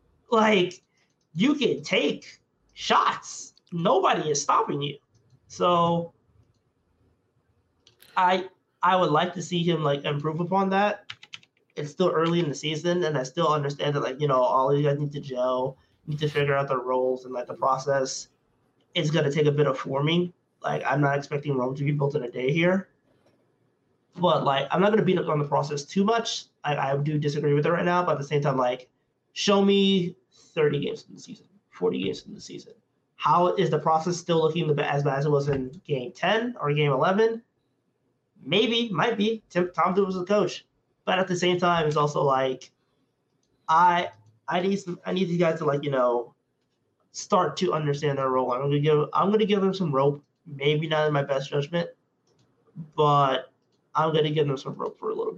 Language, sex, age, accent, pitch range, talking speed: English, male, 20-39, American, 135-175 Hz, 205 wpm